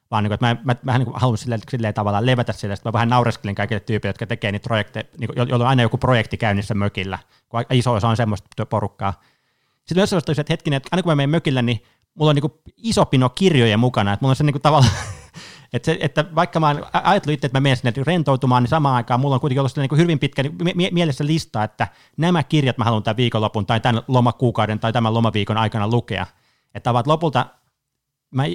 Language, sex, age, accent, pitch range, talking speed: Finnish, male, 30-49, native, 115-145 Hz, 225 wpm